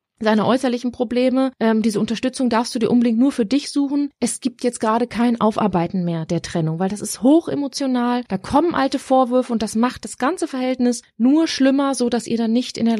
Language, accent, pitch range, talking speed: German, German, 215-260 Hz, 215 wpm